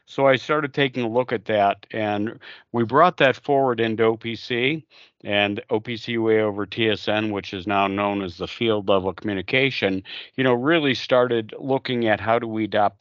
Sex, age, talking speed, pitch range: male, 50-69, 180 wpm, 100-125 Hz